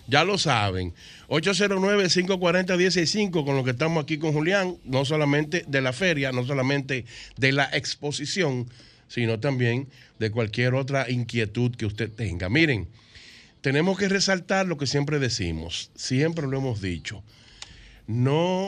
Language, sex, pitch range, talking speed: Spanish, male, 110-160 Hz, 145 wpm